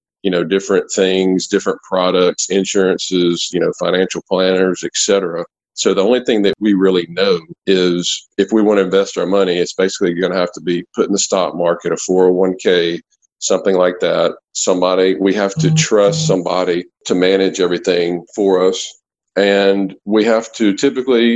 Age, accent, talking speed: 50-69, American, 170 wpm